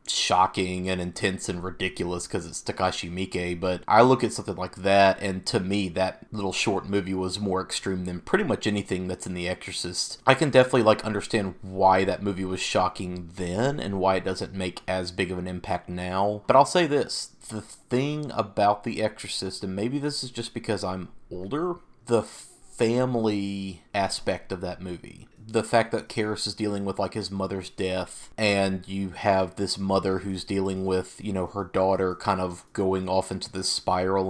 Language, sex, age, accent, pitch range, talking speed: English, male, 30-49, American, 95-105 Hz, 190 wpm